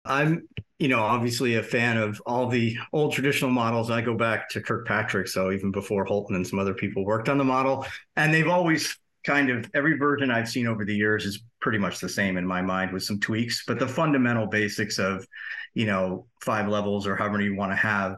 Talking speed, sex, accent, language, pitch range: 220 wpm, male, American, English, 105-125 Hz